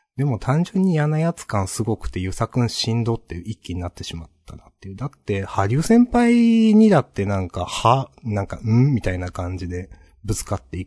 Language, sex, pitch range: Japanese, male, 85-130 Hz